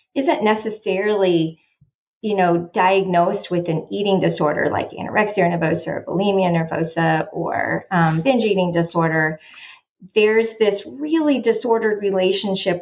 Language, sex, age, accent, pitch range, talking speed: English, female, 30-49, American, 170-210 Hz, 115 wpm